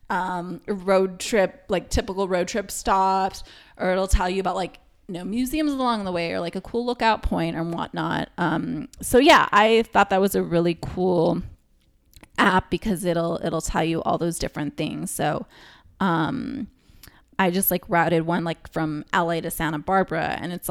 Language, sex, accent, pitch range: English, female, American, 170-195 Hz